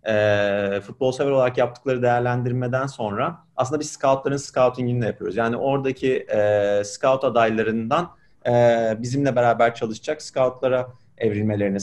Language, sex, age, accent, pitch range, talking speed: Turkish, male, 30-49, native, 115-145 Hz, 110 wpm